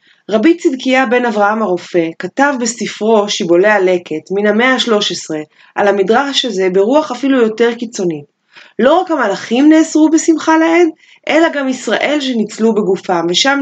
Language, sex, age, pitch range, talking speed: Hebrew, female, 30-49, 185-275 Hz, 140 wpm